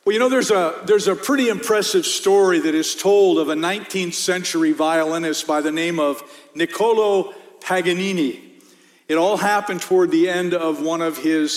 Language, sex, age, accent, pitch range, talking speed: English, male, 50-69, American, 165-255 Hz, 175 wpm